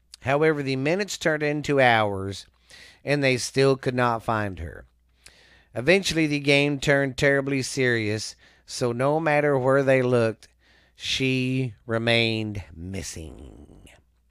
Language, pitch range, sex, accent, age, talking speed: English, 95-145 Hz, male, American, 40-59, 115 wpm